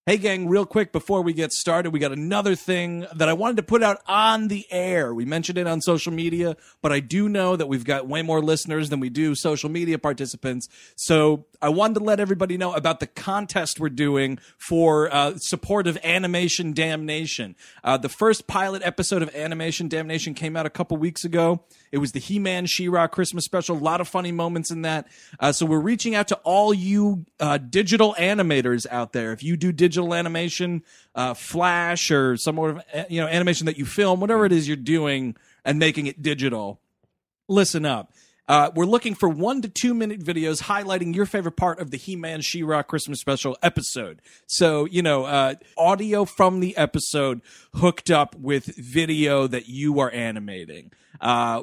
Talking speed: 195 wpm